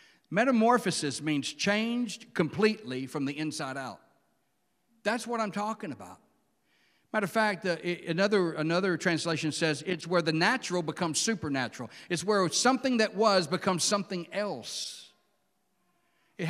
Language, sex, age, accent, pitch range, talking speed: English, male, 60-79, American, 185-230 Hz, 130 wpm